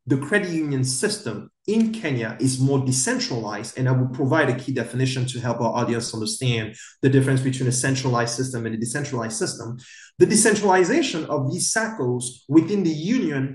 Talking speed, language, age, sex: 175 wpm, English, 30-49, male